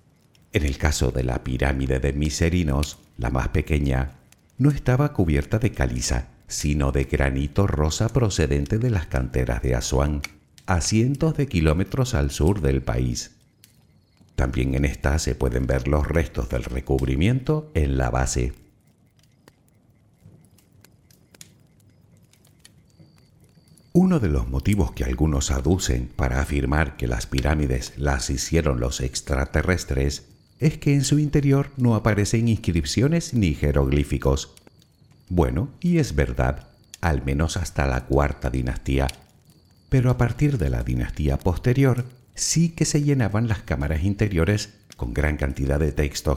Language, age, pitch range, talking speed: Spanish, 60-79, 65-105 Hz, 130 wpm